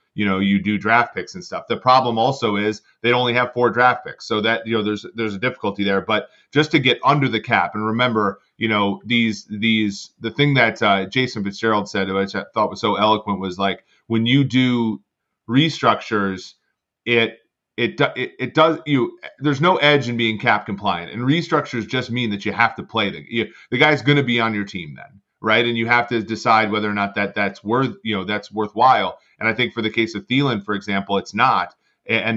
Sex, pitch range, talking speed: male, 105-125 Hz, 220 wpm